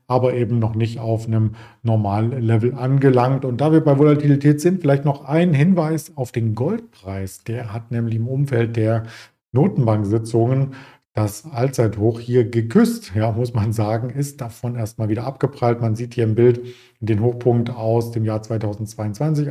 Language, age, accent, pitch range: German, 50-69, German, 115-135 Hz